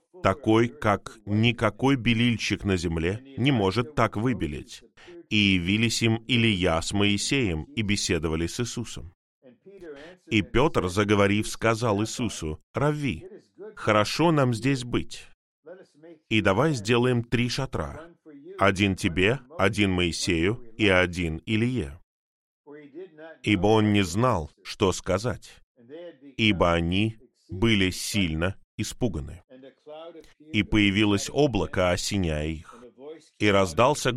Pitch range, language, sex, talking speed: 95-130 Hz, Russian, male, 105 wpm